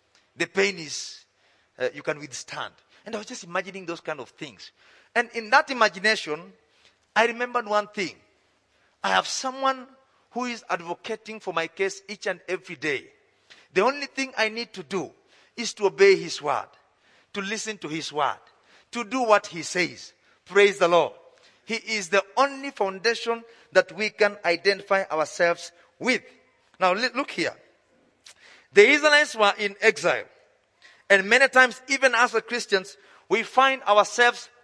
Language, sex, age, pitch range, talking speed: English, male, 40-59, 200-265 Hz, 155 wpm